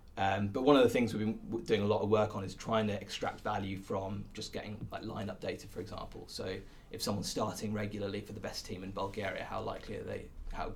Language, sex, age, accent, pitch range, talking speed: English, male, 20-39, British, 95-110 Hz, 250 wpm